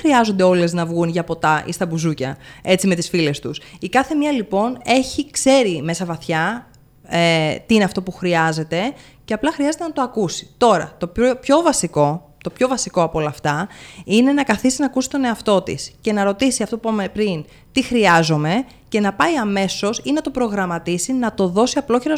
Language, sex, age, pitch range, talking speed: Greek, female, 20-39, 175-260 Hz, 200 wpm